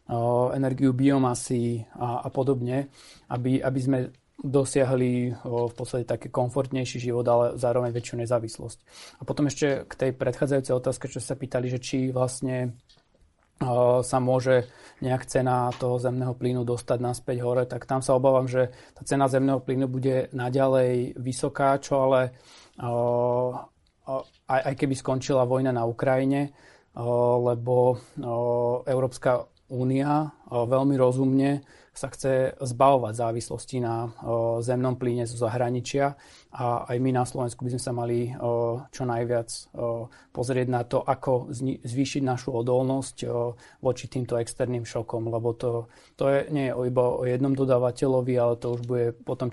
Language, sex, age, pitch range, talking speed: Slovak, male, 30-49, 120-130 Hz, 150 wpm